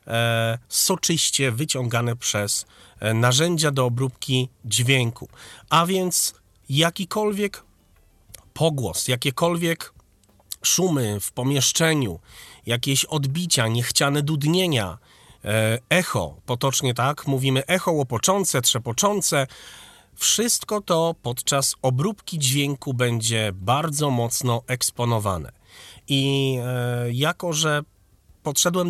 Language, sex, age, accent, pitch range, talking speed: Polish, male, 40-59, native, 115-165 Hz, 80 wpm